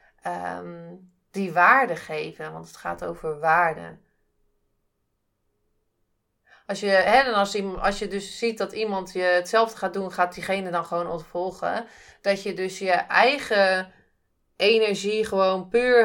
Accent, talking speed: Dutch, 140 wpm